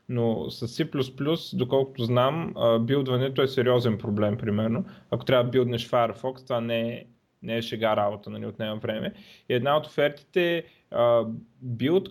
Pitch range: 115-140 Hz